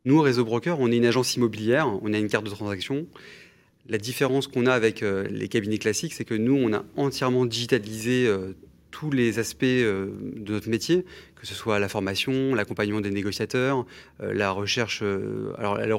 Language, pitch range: French, 105-125 Hz